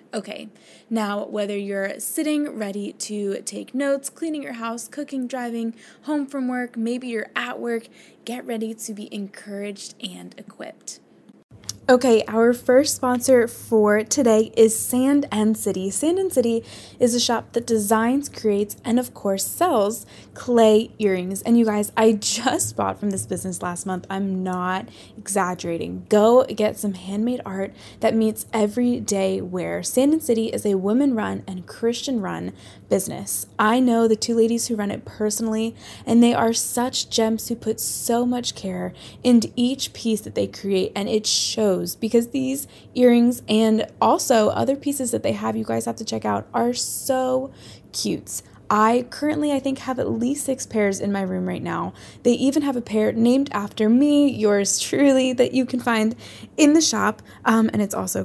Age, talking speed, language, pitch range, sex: 20-39, 175 wpm, English, 205-250 Hz, female